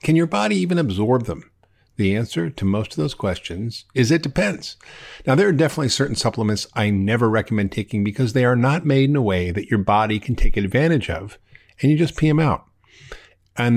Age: 50-69